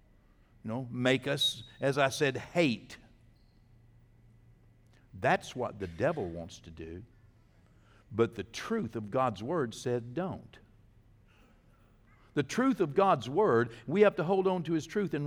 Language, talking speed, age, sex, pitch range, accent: English, 150 wpm, 60-79, male, 115-175 Hz, American